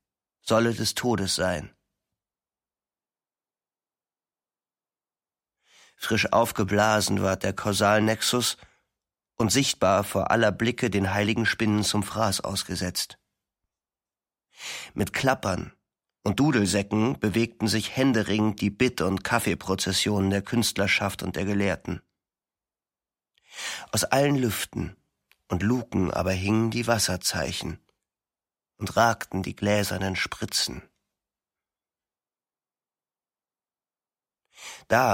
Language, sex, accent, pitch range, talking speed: German, male, German, 95-115 Hz, 85 wpm